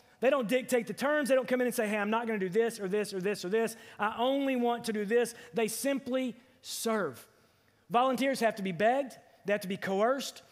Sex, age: male, 30-49